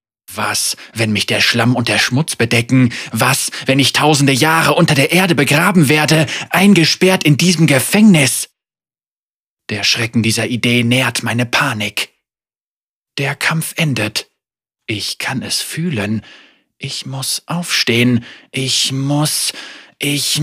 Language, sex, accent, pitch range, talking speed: German, male, German, 115-150 Hz, 125 wpm